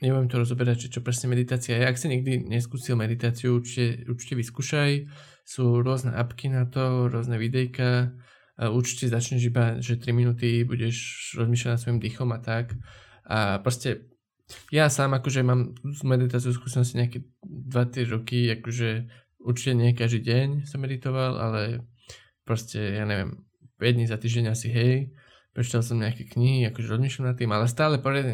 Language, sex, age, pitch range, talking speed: Slovak, male, 20-39, 120-130 Hz, 160 wpm